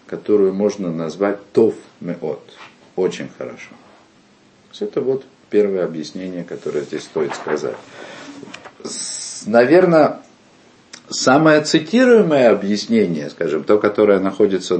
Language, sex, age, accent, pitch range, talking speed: Russian, male, 50-69, native, 100-150 Hz, 95 wpm